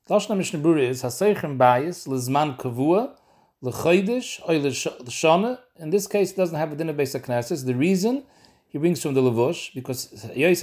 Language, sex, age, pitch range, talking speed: English, male, 40-59, 130-170 Hz, 115 wpm